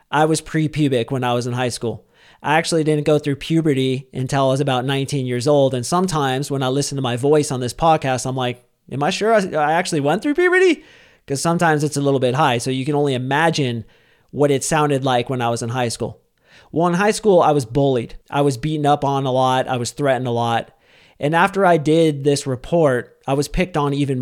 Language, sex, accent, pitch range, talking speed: English, male, American, 130-155 Hz, 240 wpm